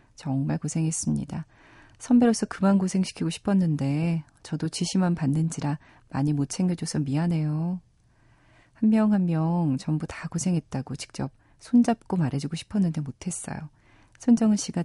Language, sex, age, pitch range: Korean, female, 30-49, 135-175 Hz